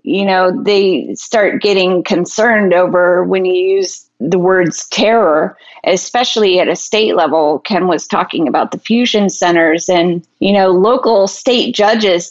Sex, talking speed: female, 150 wpm